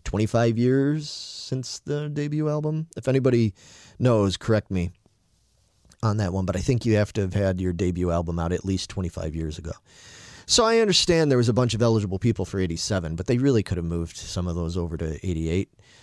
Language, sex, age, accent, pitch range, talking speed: English, male, 30-49, American, 90-115 Hz, 205 wpm